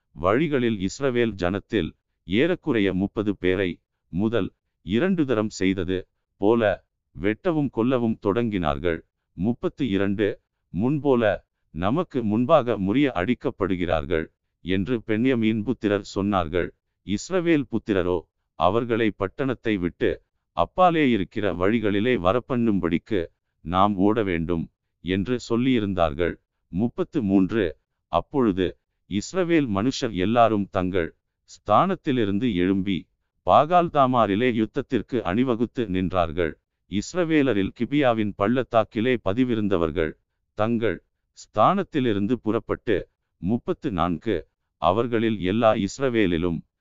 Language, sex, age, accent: Tamil, male, 50-69, native